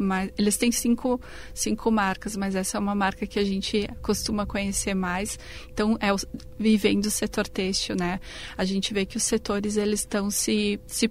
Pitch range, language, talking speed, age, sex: 195-220 Hz, Portuguese, 190 wpm, 30-49, female